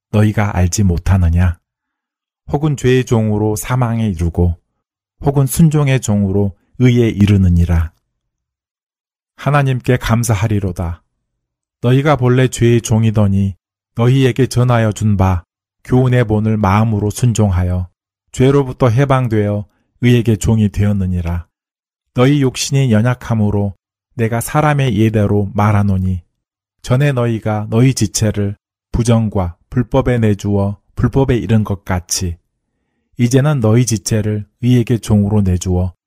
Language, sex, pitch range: Korean, male, 95-125 Hz